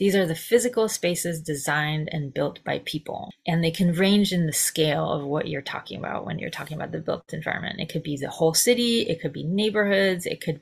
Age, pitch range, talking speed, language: 30-49, 155-195 Hz, 230 wpm, English